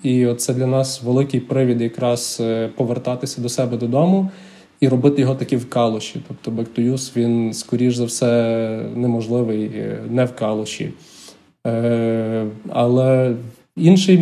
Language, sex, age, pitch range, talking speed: Ukrainian, male, 20-39, 115-135 Hz, 120 wpm